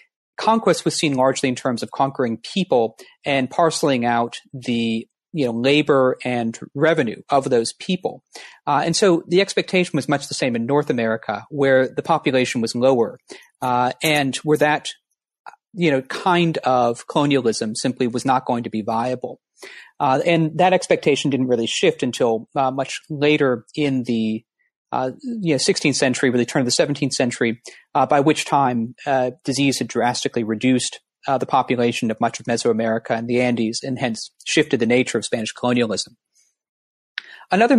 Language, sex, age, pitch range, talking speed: English, male, 40-59, 125-160 Hz, 170 wpm